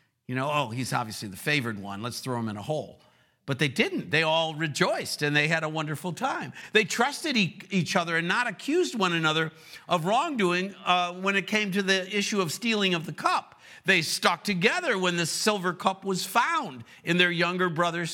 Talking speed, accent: 205 wpm, American